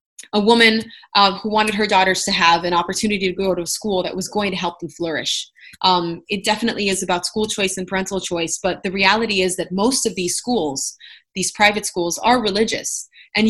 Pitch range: 185-220 Hz